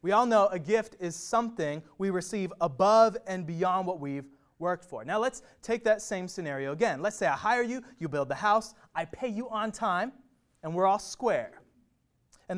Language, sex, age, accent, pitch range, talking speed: English, male, 30-49, American, 145-210 Hz, 200 wpm